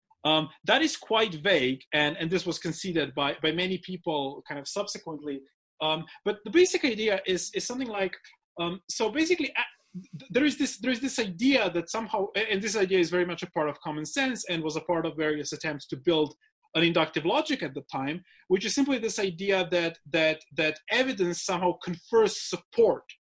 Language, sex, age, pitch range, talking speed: English, male, 30-49, 155-210 Hz, 190 wpm